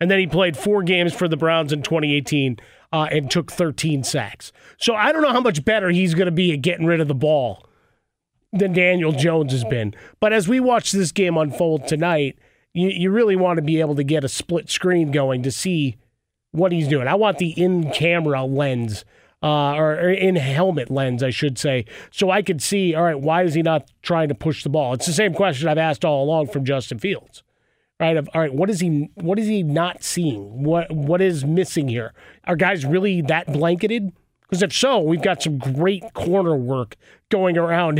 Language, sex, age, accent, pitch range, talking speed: English, male, 30-49, American, 140-175 Hz, 215 wpm